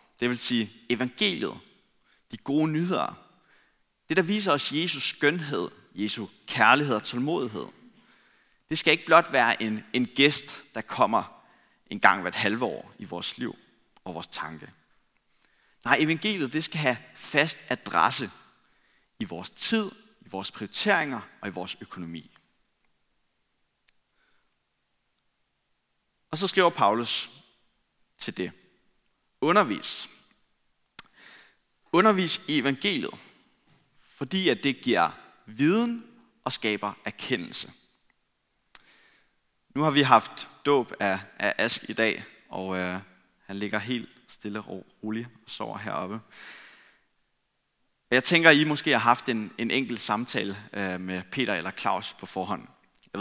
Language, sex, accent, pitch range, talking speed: Danish, male, native, 105-155 Hz, 125 wpm